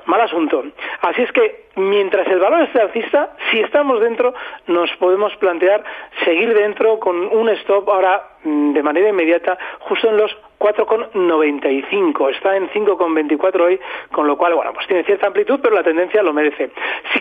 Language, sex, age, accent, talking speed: Spanish, male, 40-59, Spanish, 165 wpm